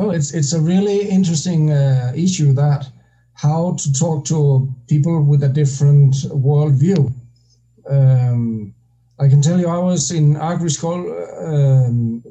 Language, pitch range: English, 130-165 Hz